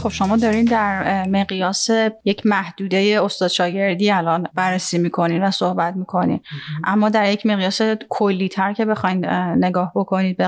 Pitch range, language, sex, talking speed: 190-215 Hz, Persian, female, 150 wpm